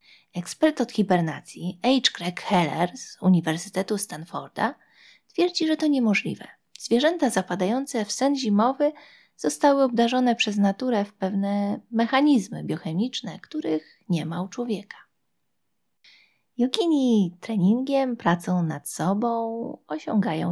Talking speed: 110 wpm